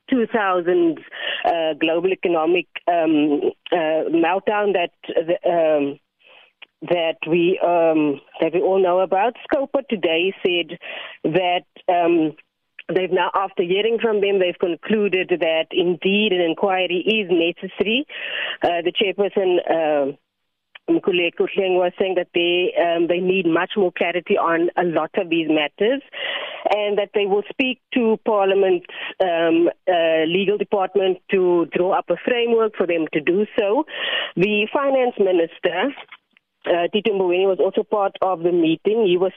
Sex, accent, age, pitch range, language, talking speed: female, Indian, 30-49, 175-210 Hz, English, 135 wpm